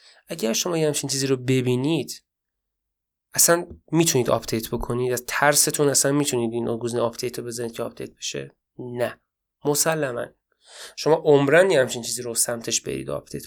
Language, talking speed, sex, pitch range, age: Persian, 140 wpm, male, 120-150 Hz, 20-39